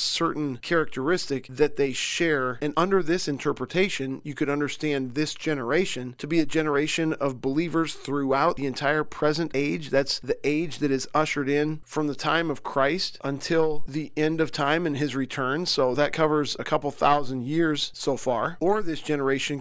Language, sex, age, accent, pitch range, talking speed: English, male, 40-59, American, 135-155 Hz, 175 wpm